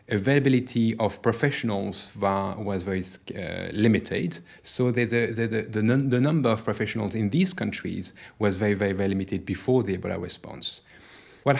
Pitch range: 105-125 Hz